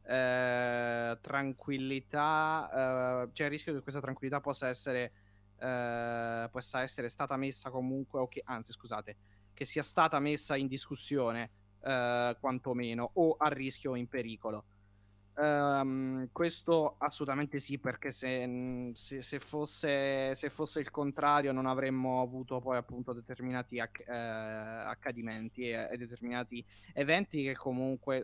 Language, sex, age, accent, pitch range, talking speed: Italian, male, 20-39, native, 120-140 Hz, 135 wpm